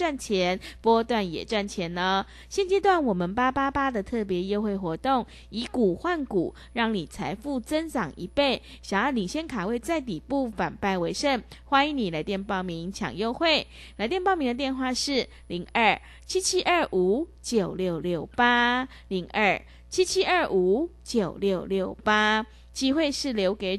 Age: 20-39